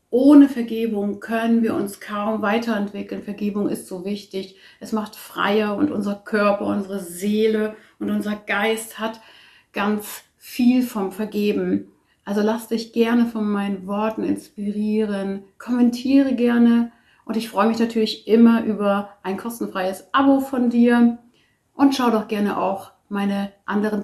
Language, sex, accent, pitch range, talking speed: German, female, German, 190-220 Hz, 140 wpm